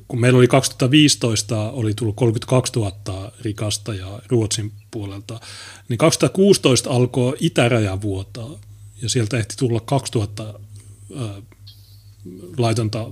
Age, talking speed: 30-49, 95 wpm